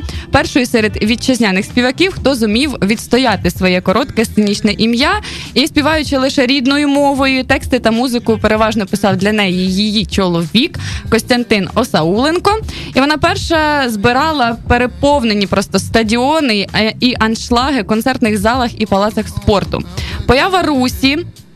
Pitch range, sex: 215-270 Hz, female